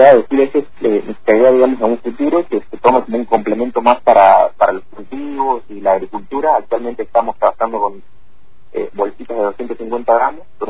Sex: male